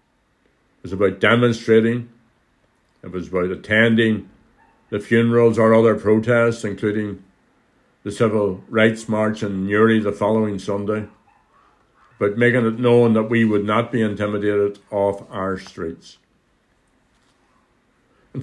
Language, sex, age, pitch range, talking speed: English, male, 60-79, 100-120 Hz, 120 wpm